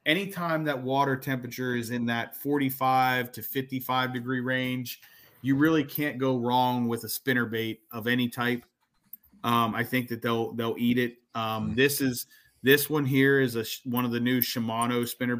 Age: 30-49